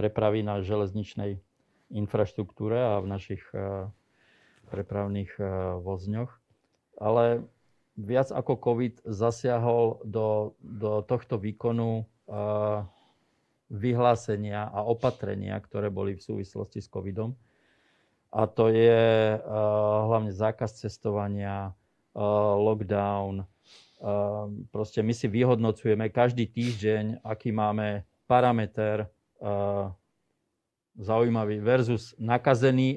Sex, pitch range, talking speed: male, 105-120 Hz, 85 wpm